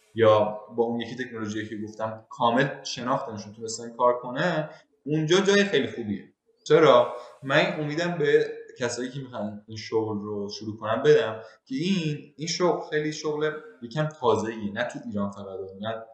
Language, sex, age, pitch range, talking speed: Persian, male, 20-39, 110-155 Hz, 160 wpm